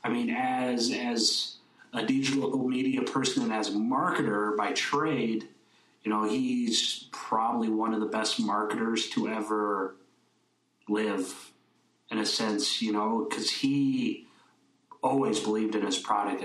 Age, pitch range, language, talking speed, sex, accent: 30-49, 115-155 Hz, English, 140 wpm, male, American